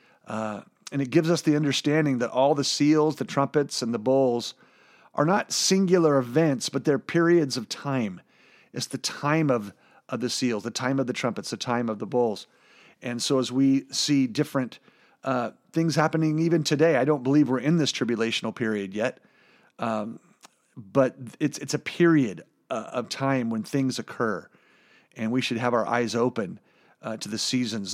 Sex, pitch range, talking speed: male, 120-150 Hz, 185 wpm